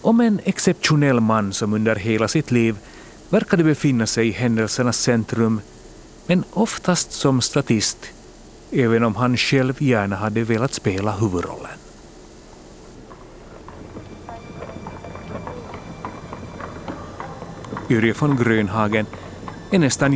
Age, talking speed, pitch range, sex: 40-59, 100 wpm, 110-135 Hz, male